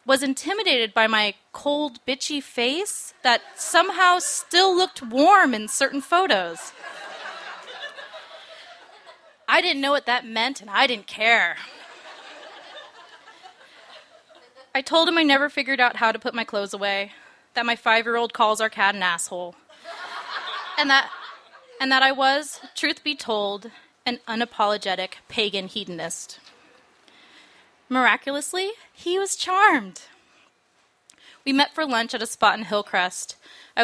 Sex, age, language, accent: female, 20-39, English, American